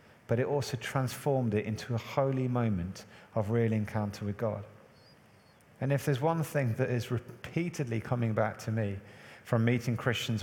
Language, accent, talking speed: English, British, 165 wpm